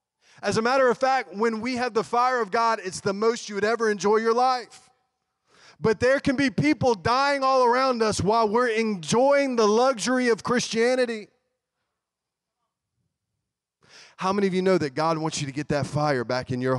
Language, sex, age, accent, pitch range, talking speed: English, male, 30-49, American, 175-225 Hz, 190 wpm